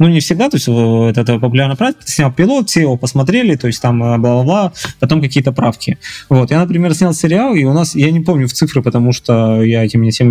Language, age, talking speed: Russian, 20-39, 220 wpm